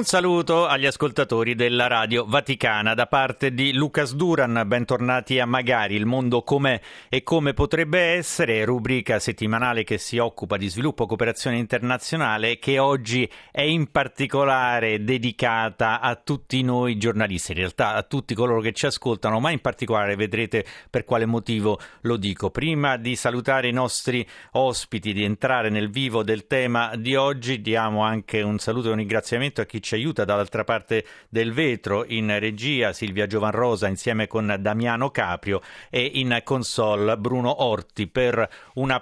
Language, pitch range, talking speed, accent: Italian, 110-130 Hz, 160 wpm, native